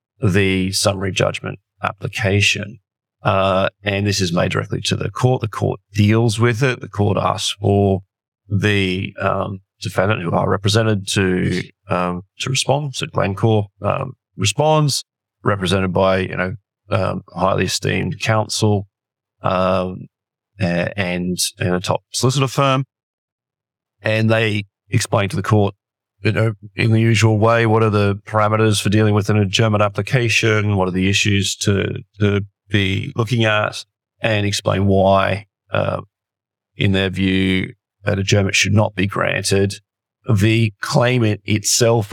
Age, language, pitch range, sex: 30-49, English, 100-120 Hz, male